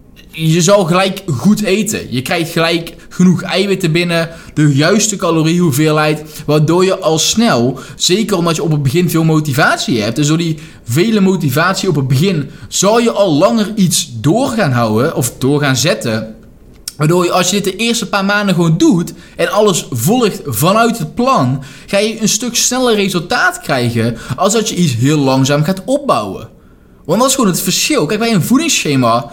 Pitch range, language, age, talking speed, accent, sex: 150-210 Hz, Dutch, 20-39, 185 wpm, Dutch, male